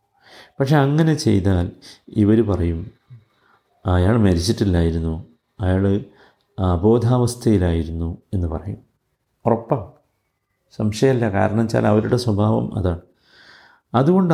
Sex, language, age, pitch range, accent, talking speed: male, Malayalam, 50-69, 95-120 Hz, native, 75 wpm